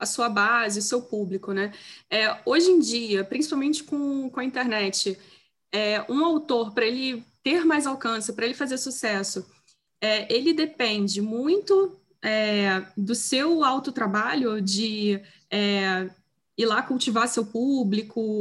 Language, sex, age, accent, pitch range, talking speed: Portuguese, female, 20-39, Brazilian, 215-270 Hz, 140 wpm